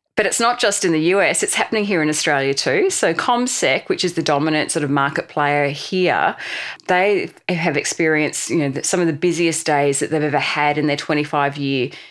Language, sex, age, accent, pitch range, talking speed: English, female, 30-49, Australian, 140-170 Hz, 205 wpm